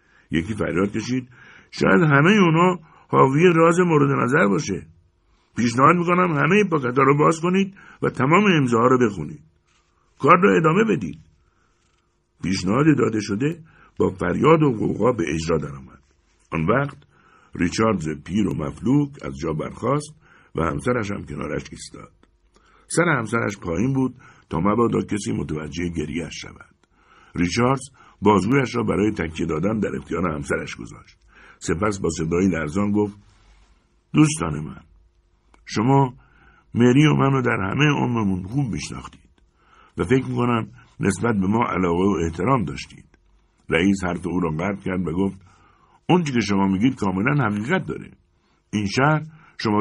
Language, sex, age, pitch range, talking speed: Persian, male, 60-79, 85-140 Hz, 140 wpm